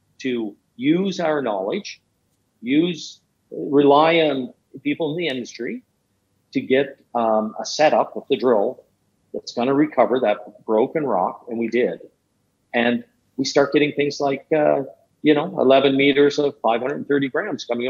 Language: English